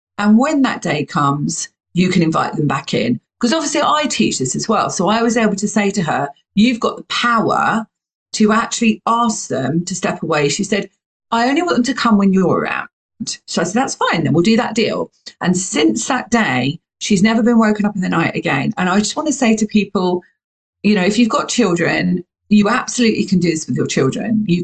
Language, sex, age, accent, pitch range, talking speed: English, female, 40-59, British, 180-230 Hz, 230 wpm